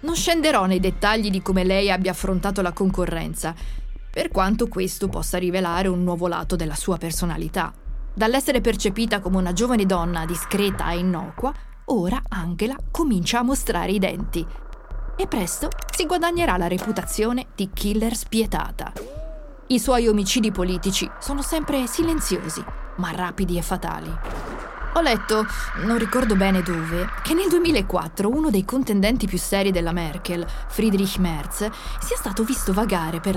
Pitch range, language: 185-245 Hz, Italian